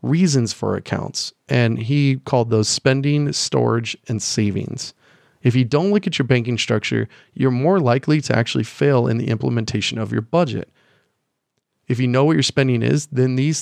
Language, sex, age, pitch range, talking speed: English, male, 30-49, 115-145 Hz, 175 wpm